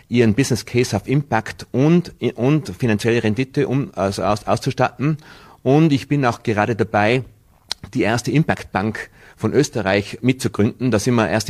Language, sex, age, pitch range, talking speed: German, male, 30-49, 110-130 Hz, 155 wpm